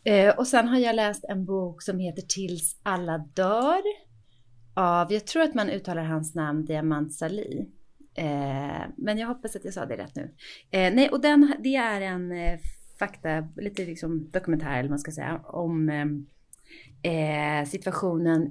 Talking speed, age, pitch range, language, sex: 160 wpm, 30-49, 150-210 Hz, English, female